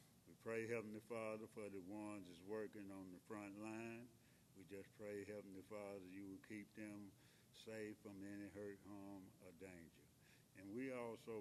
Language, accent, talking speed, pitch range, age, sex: English, American, 165 wpm, 95-110 Hz, 60-79, male